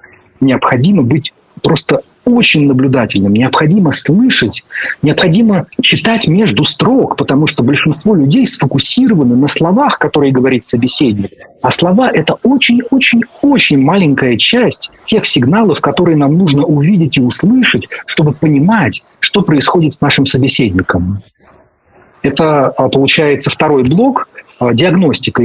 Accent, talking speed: native, 110 wpm